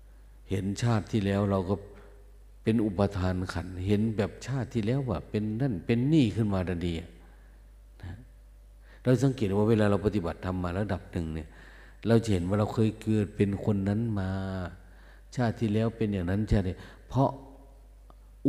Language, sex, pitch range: Thai, male, 90-110 Hz